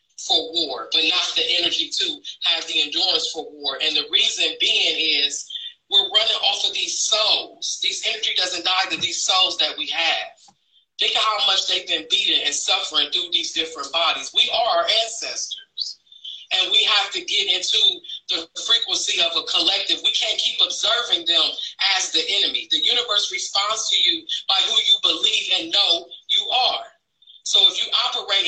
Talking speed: 180 wpm